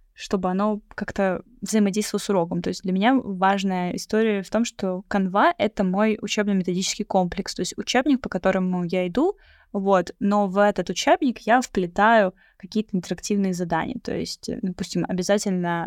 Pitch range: 185-225 Hz